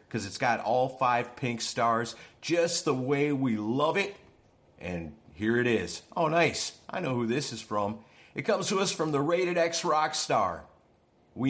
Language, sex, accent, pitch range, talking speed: English, male, American, 115-155 Hz, 190 wpm